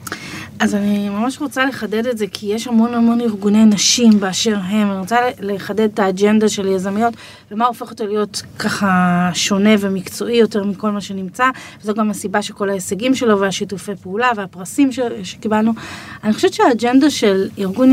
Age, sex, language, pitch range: 30-49, female, Hebrew, 195-235 Hz